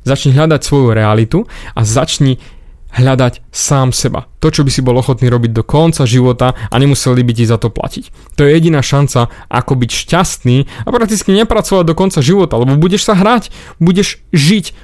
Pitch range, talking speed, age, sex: 120-145 Hz, 180 wpm, 20-39, male